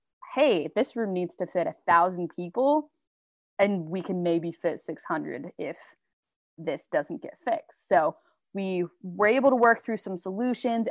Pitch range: 175-220 Hz